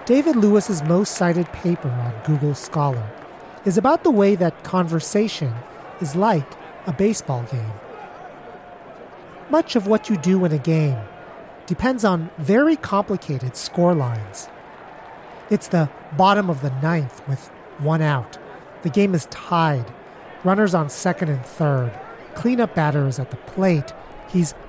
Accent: American